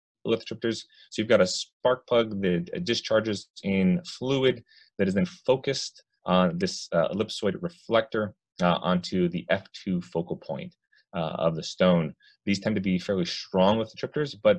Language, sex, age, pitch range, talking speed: English, male, 30-49, 85-130 Hz, 160 wpm